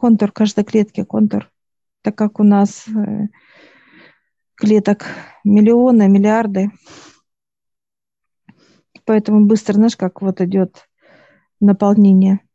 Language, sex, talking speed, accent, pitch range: Russian, female, 85 wpm, native, 200-220 Hz